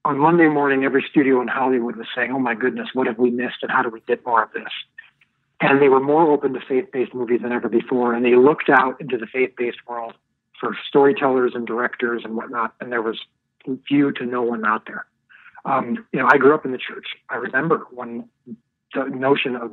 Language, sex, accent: English, male, American